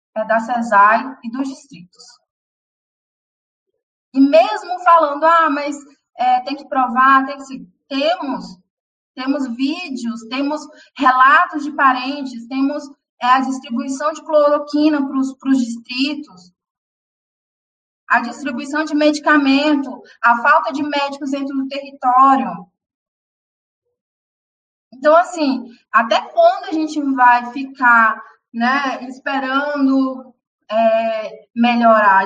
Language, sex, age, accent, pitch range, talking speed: Portuguese, female, 20-39, Brazilian, 240-300 Hz, 110 wpm